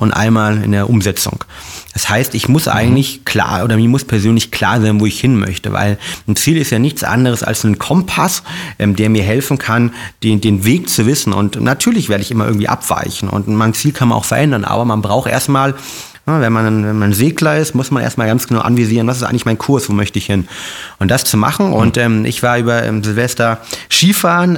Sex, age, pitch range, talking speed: male, 30-49, 110-125 Hz, 225 wpm